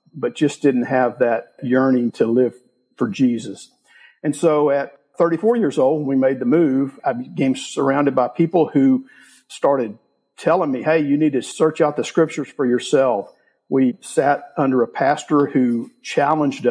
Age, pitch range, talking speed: 50-69, 130-165 Hz, 170 wpm